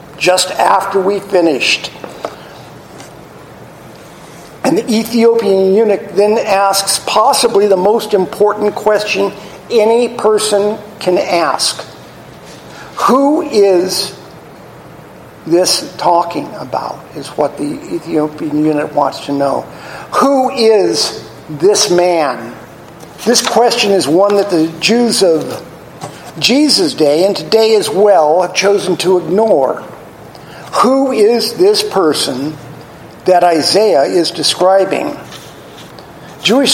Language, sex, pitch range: English, male, 180-225 Hz